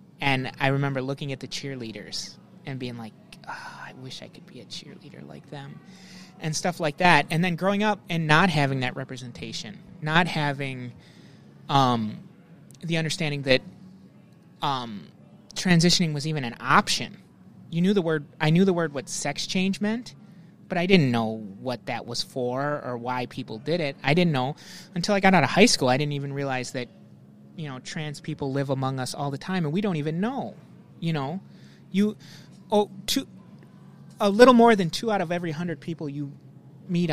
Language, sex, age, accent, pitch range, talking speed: English, male, 30-49, American, 140-185 Hz, 190 wpm